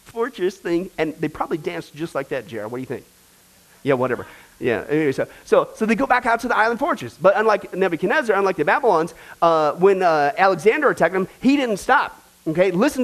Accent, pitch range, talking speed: American, 175-265 Hz, 210 wpm